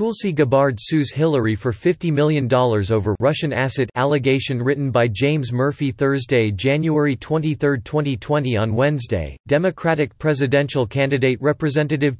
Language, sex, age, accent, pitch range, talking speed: English, male, 40-59, American, 120-150 Hz, 125 wpm